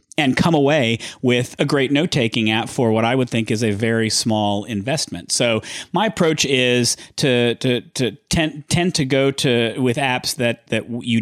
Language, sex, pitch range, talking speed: English, male, 115-130 Hz, 185 wpm